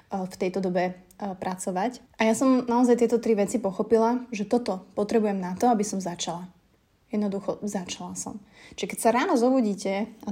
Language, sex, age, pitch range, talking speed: Slovak, female, 20-39, 195-225 Hz, 170 wpm